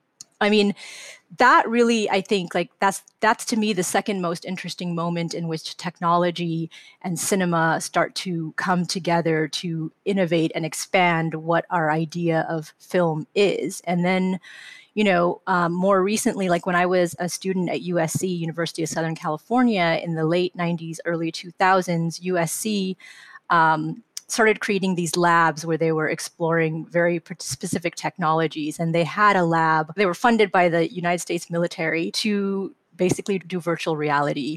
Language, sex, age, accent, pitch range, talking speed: English, female, 30-49, American, 165-195 Hz, 160 wpm